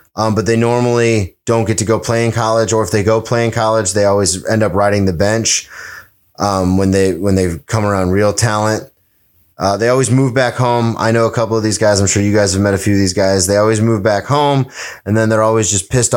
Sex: male